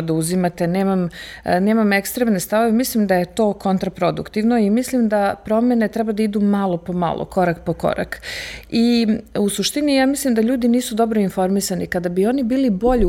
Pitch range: 190-245 Hz